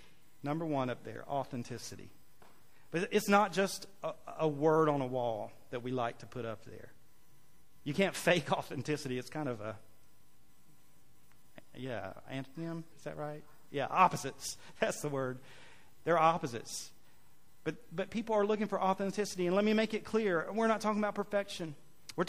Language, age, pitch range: English, 40-59, 135-175 Hz